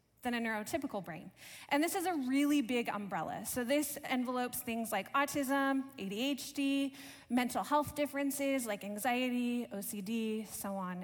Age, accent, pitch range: 20-39, American, 215-280 Hz